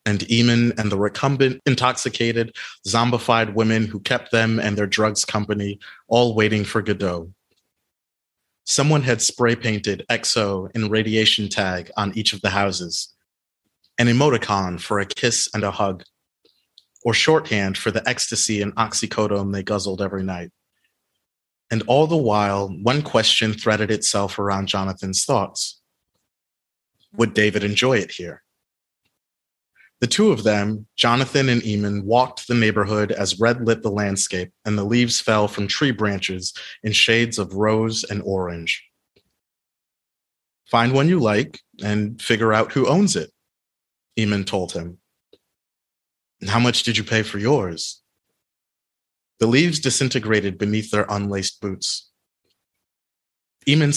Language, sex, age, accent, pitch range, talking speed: English, male, 30-49, American, 100-120 Hz, 135 wpm